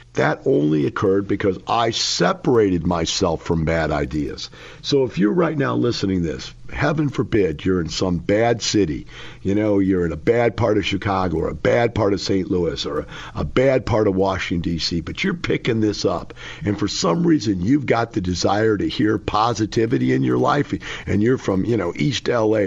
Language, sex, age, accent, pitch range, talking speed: English, male, 50-69, American, 90-120 Hz, 195 wpm